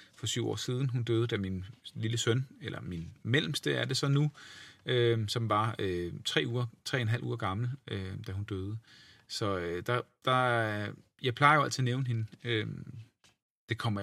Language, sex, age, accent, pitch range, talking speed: Danish, male, 40-59, native, 110-140 Hz, 200 wpm